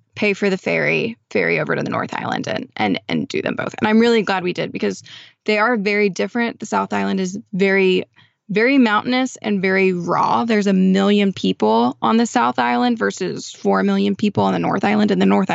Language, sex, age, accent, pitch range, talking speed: English, female, 10-29, American, 190-230 Hz, 215 wpm